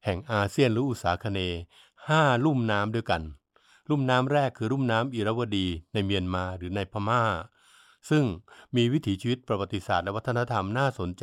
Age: 60-79